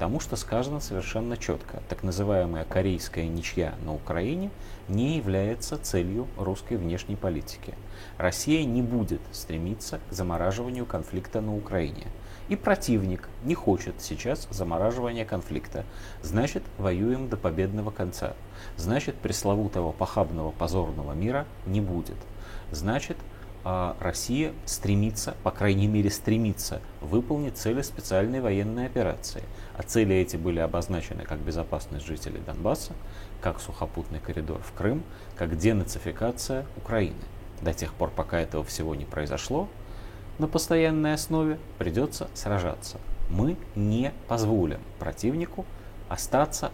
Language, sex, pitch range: Russian, male, 90-115 Hz